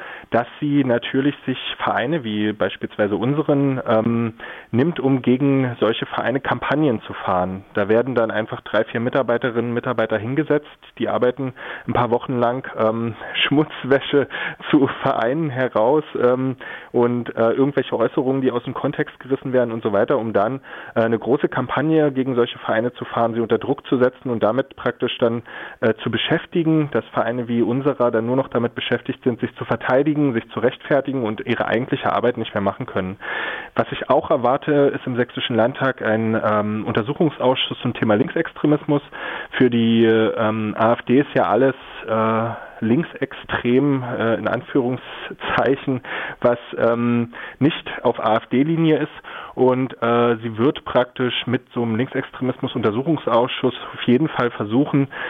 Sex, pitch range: male, 115-135 Hz